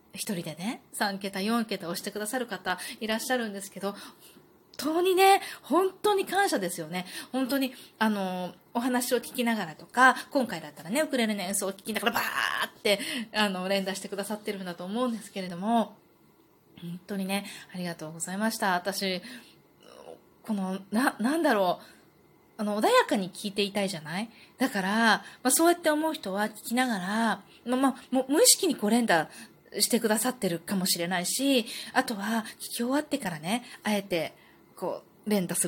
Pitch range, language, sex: 190-255 Hz, Japanese, female